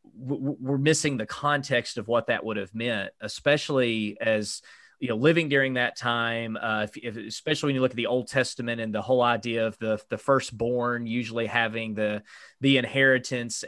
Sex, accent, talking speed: male, American, 185 wpm